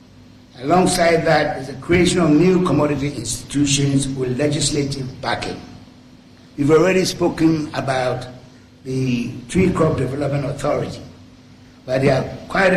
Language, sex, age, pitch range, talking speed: English, male, 60-79, 130-170 Hz, 115 wpm